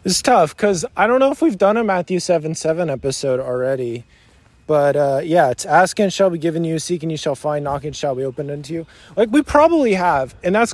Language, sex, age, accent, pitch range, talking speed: English, male, 20-39, American, 155-200 Hz, 225 wpm